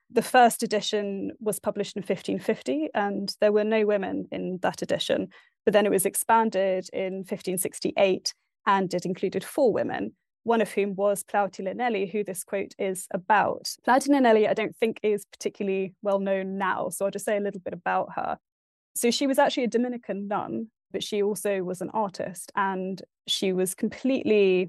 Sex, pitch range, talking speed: female, 195-235 Hz, 180 wpm